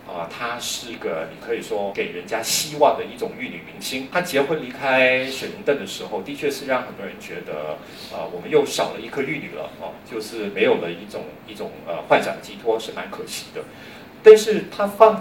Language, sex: Chinese, male